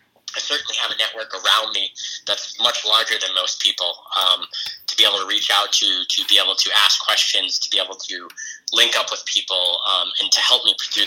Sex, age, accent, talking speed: male, 20-39, American, 220 wpm